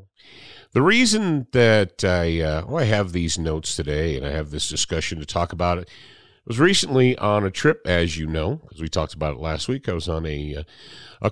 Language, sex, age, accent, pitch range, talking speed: English, male, 50-69, American, 85-120 Hz, 225 wpm